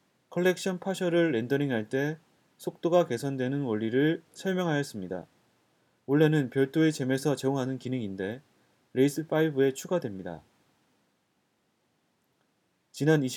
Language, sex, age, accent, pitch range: Korean, male, 30-49, native, 125-165 Hz